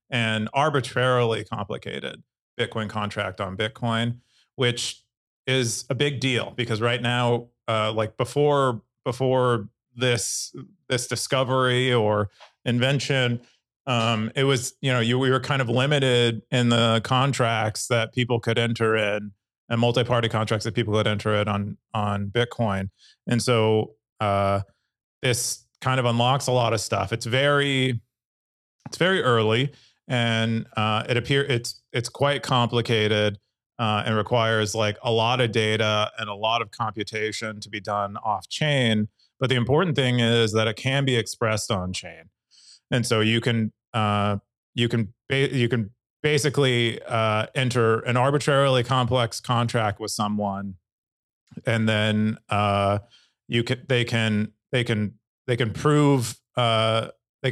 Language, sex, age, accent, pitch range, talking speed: English, male, 30-49, American, 110-125 Hz, 145 wpm